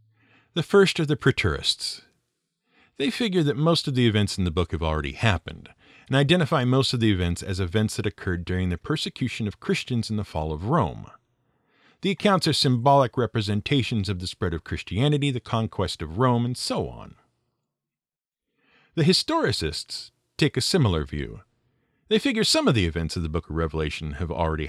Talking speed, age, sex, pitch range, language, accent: 180 wpm, 50-69, male, 95-150 Hz, English, American